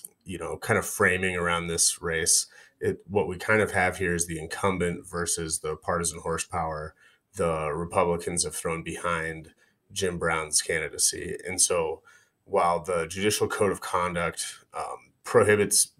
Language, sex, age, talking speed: English, male, 30-49, 150 wpm